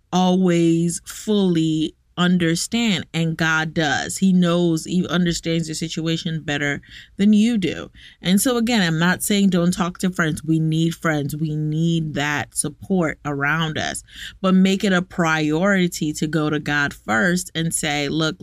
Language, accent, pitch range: English, American, 160-190 Hz